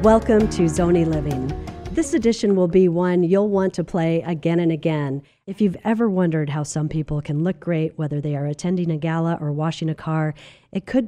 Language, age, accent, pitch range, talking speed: English, 40-59, American, 155-190 Hz, 205 wpm